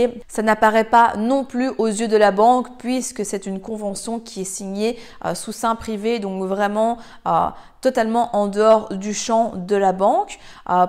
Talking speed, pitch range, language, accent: 175 wpm, 200-240 Hz, French, French